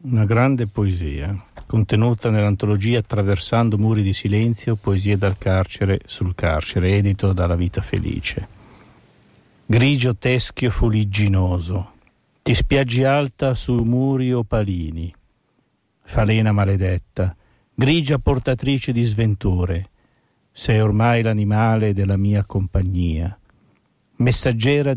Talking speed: 95 wpm